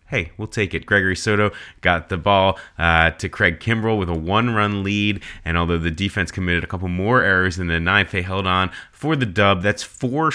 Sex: male